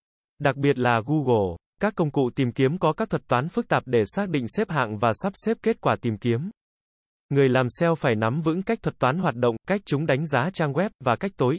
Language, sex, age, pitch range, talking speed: Vietnamese, male, 20-39, 125-160 Hz, 245 wpm